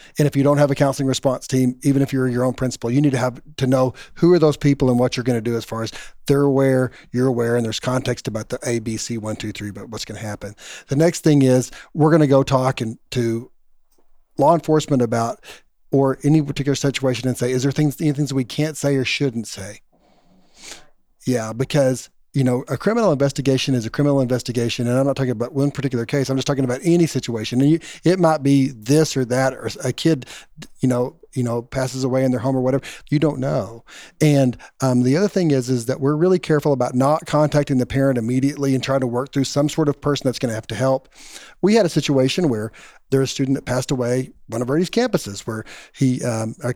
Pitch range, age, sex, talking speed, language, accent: 125-145 Hz, 40-59, male, 235 wpm, English, American